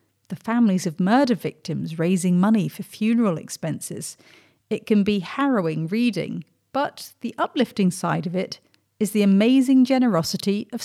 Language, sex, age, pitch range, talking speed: English, female, 40-59, 170-220 Hz, 145 wpm